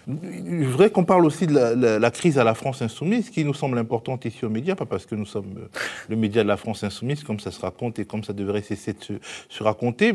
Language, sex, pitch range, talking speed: French, male, 115-140 Hz, 265 wpm